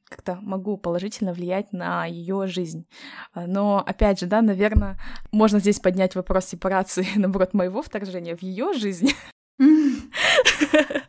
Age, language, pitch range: 20-39, Russian, 180-225 Hz